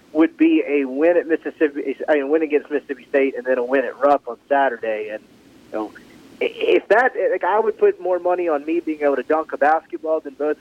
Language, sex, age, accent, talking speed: English, male, 30-49, American, 230 wpm